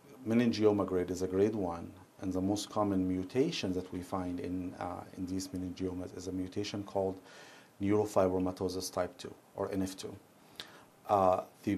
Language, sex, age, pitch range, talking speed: English, male, 40-59, 95-105 Hz, 155 wpm